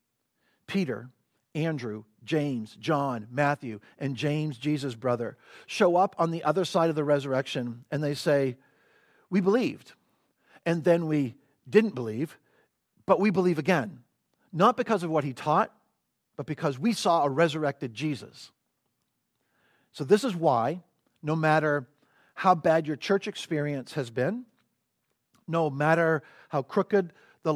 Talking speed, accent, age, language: 135 wpm, American, 50-69, English